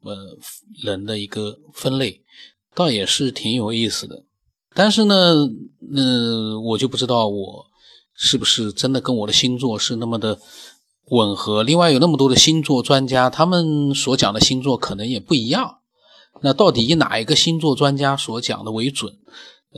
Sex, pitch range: male, 105-135 Hz